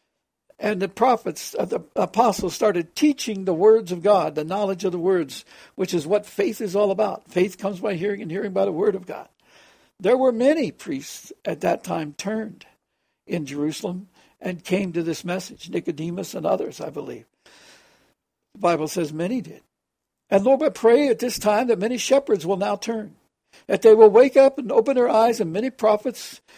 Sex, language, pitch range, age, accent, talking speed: male, English, 170-230 Hz, 60-79, American, 190 wpm